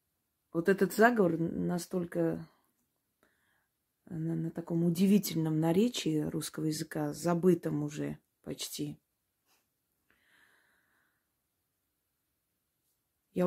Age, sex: 30-49, female